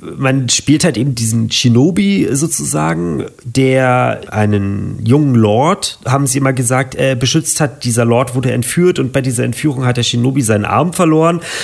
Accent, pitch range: German, 115-140 Hz